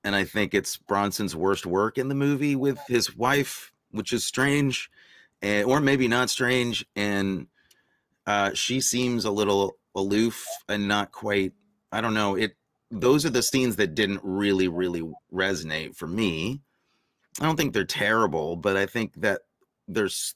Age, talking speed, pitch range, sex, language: 30-49, 160 wpm, 95-120 Hz, male, English